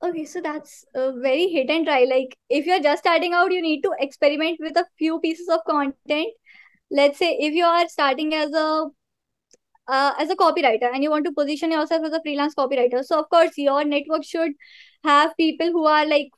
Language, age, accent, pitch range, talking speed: English, 20-39, Indian, 285-355 Hz, 210 wpm